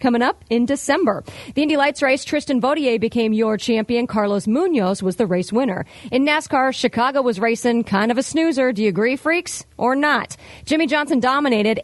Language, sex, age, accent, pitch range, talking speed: English, female, 40-59, American, 215-275 Hz, 190 wpm